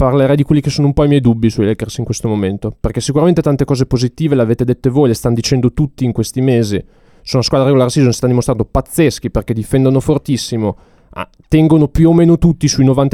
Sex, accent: male, native